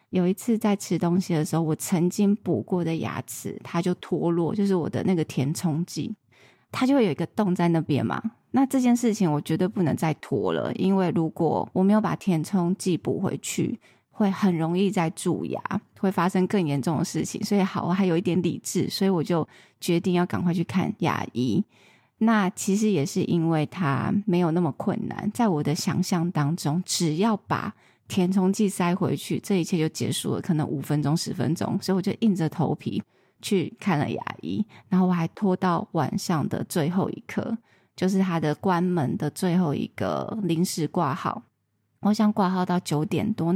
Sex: female